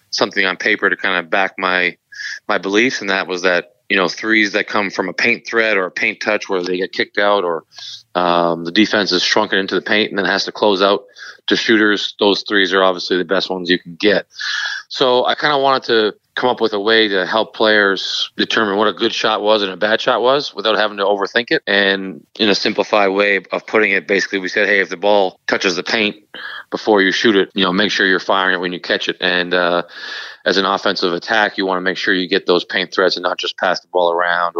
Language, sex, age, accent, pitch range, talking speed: English, male, 30-49, American, 95-110 Hz, 250 wpm